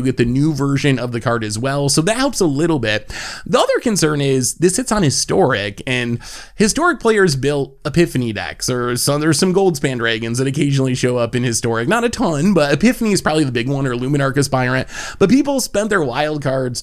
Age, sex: 20-39, male